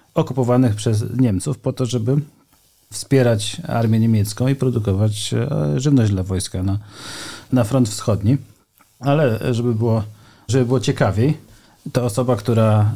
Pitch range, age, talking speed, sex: 100-125 Hz, 40-59, 125 wpm, male